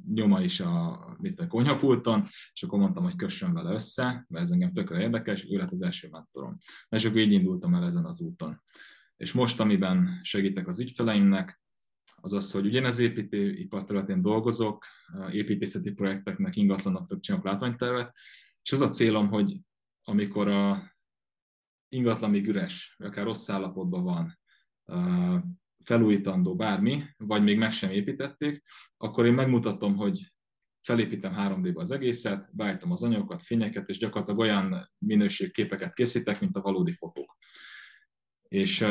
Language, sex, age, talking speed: Hungarian, male, 20-39, 145 wpm